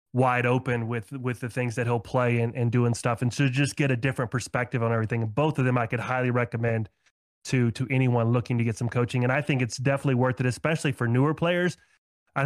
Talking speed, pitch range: 235 wpm, 120-140 Hz